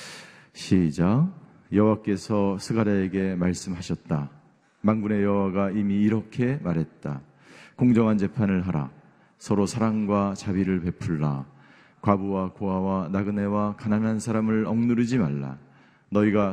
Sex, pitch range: male, 105-150 Hz